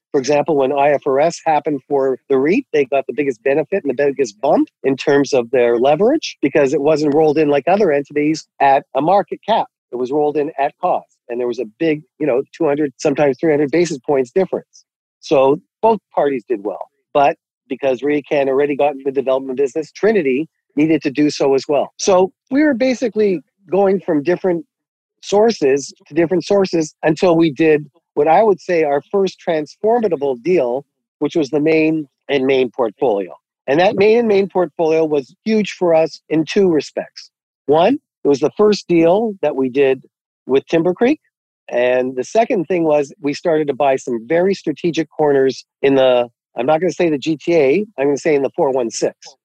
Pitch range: 140-185 Hz